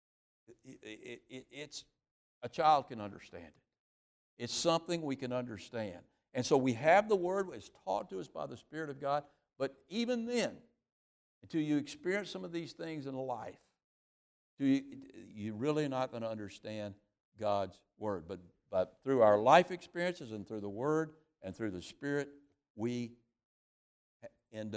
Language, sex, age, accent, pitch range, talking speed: English, male, 60-79, American, 105-155 Hz, 160 wpm